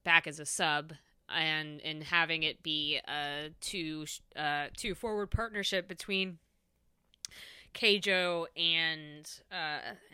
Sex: female